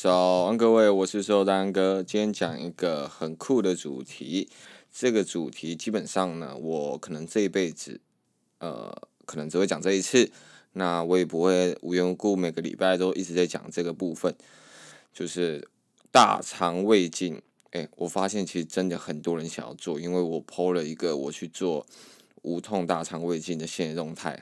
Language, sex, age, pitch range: Chinese, male, 20-39, 85-100 Hz